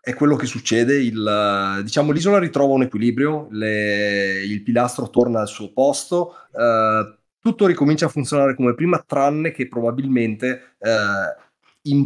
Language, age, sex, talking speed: Italian, 30-49, male, 145 wpm